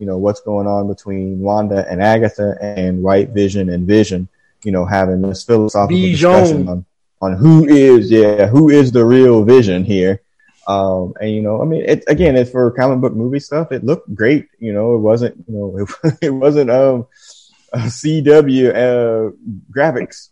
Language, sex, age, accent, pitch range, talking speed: English, male, 30-49, American, 100-120 Hz, 180 wpm